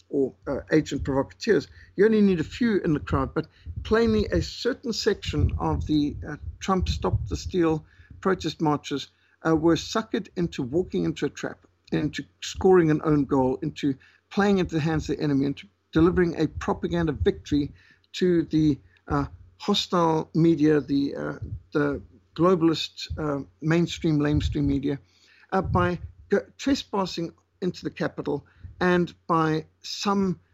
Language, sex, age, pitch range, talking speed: English, male, 60-79, 140-180 Hz, 145 wpm